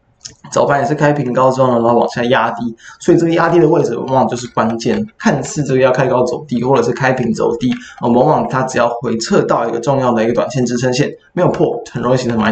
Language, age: Chinese, 20-39